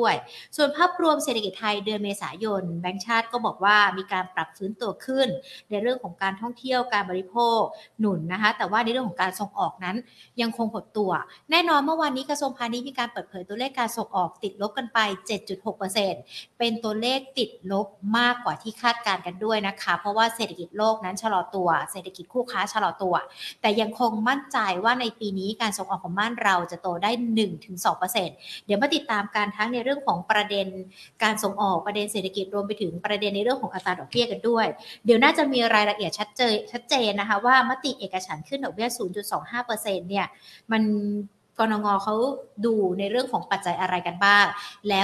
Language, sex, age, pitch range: Thai, female, 60-79, 195-240 Hz